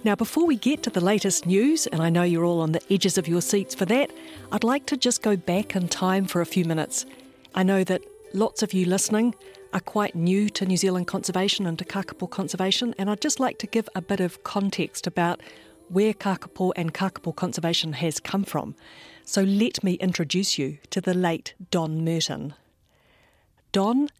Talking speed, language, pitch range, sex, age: 200 wpm, English, 170-205 Hz, female, 50-69